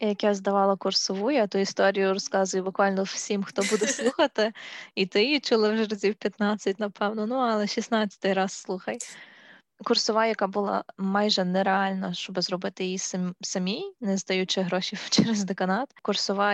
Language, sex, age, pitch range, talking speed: Ukrainian, female, 20-39, 190-220 Hz, 150 wpm